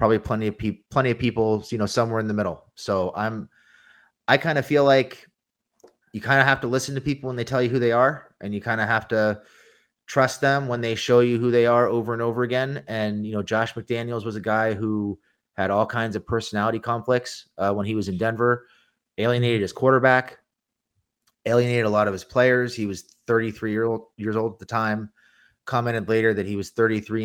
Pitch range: 100-115 Hz